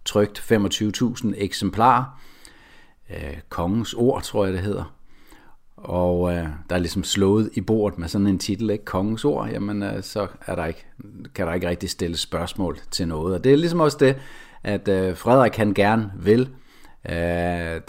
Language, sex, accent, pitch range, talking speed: Danish, male, native, 90-115 Hz, 170 wpm